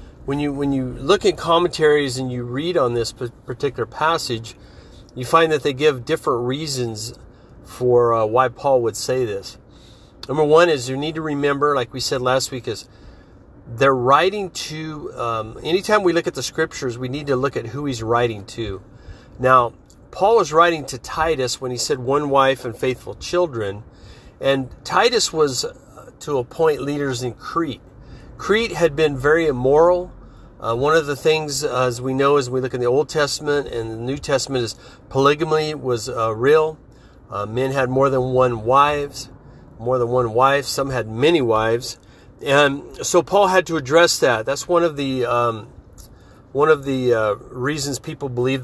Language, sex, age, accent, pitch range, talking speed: English, male, 40-59, American, 120-145 Hz, 180 wpm